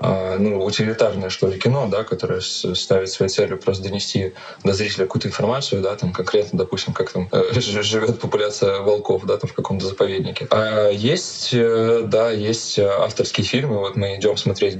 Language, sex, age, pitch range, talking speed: Russian, male, 20-39, 95-120 Hz, 160 wpm